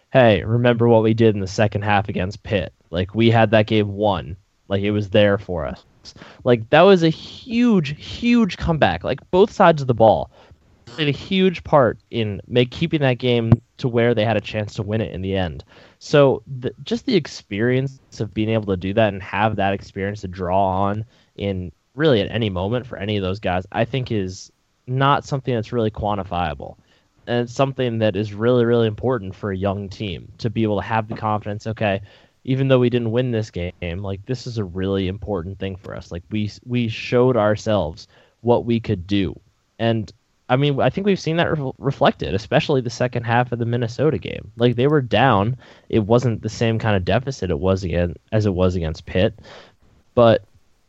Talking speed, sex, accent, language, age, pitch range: 210 wpm, male, American, English, 10-29, 100-125 Hz